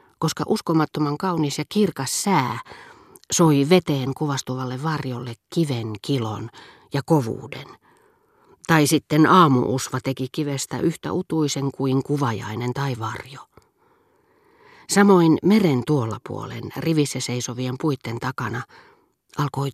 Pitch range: 125-165 Hz